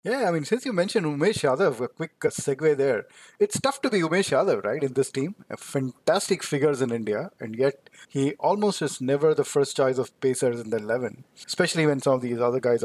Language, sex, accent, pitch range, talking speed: English, male, Indian, 135-175 Hz, 220 wpm